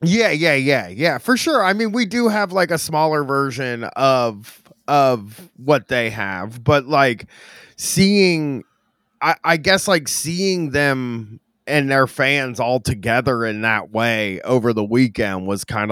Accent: American